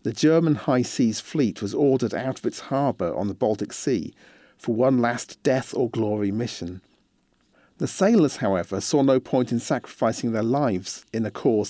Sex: male